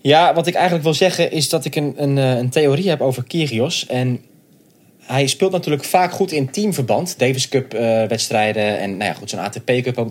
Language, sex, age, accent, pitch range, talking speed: Dutch, male, 20-39, Dutch, 115-155 Hz, 215 wpm